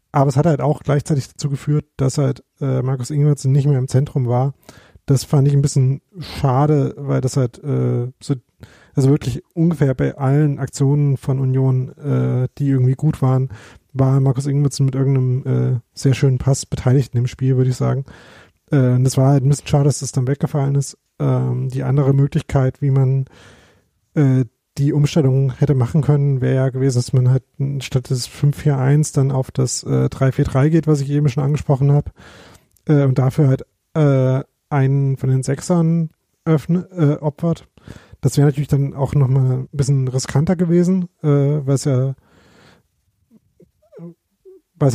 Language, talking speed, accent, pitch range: German, 170 wpm, German, 130-145 Hz